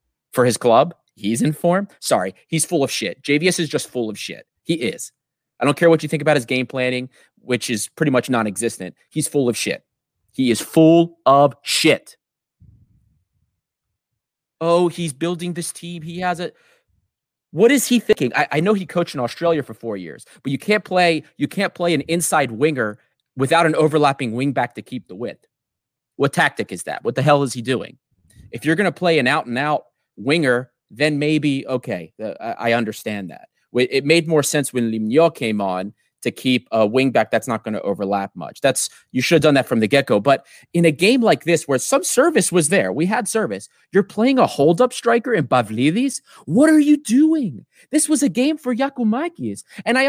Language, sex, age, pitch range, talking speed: English, male, 30-49, 120-175 Hz, 205 wpm